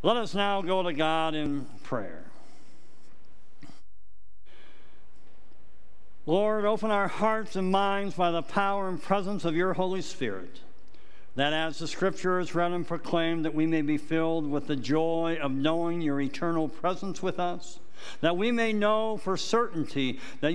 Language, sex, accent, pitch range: English, male, American, 145-190 Hz